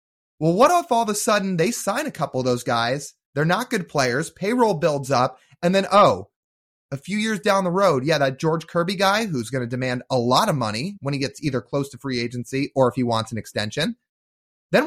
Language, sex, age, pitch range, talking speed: English, male, 30-49, 135-210 Hz, 235 wpm